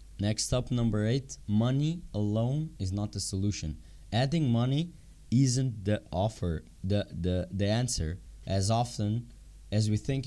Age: 20-39